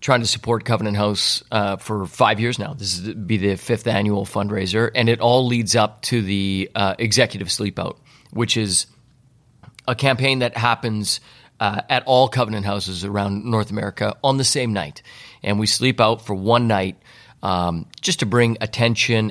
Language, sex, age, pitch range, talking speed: English, male, 30-49, 100-120 Hz, 180 wpm